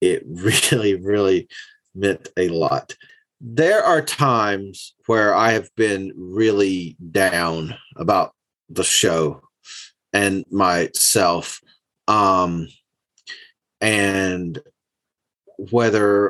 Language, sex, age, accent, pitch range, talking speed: English, male, 30-49, American, 100-145 Hz, 85 wpm